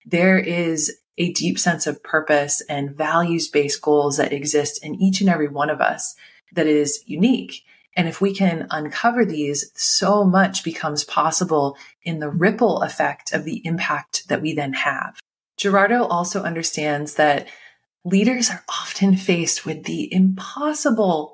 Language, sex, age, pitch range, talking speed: English, female, 20-39, 150-190 Hz, 150 wpm